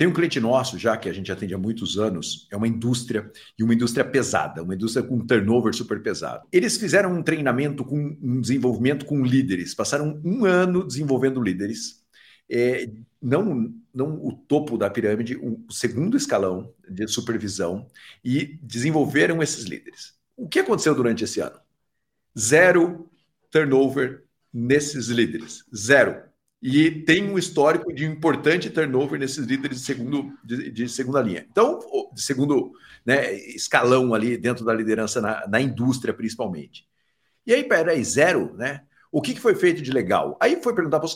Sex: male